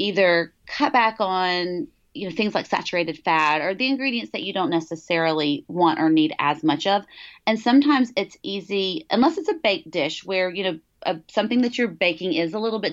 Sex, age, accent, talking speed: female, 30-49, American, 200 wpm